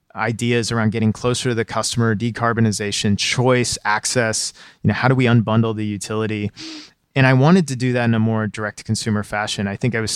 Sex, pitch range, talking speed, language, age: male, 105-135 Hz, 205 wpm, English, 20-39